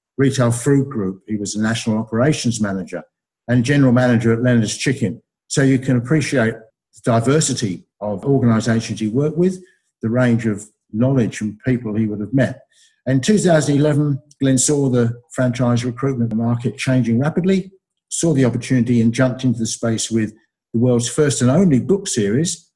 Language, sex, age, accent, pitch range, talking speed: English, male, 60-79, British, 115-135 Hz, 165 wpm